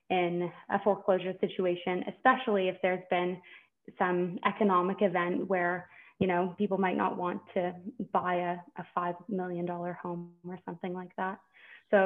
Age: 20-39